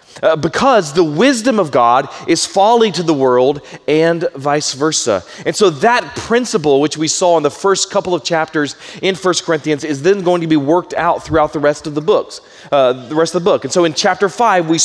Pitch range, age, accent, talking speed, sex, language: 150-190 Hz, 30-49, American, 220 wpm, male, English